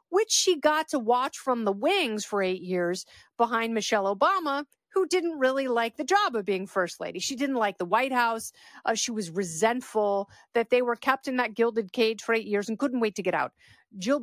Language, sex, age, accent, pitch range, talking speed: English, female, 40-59, American, 210-260 Hz, 220 wpm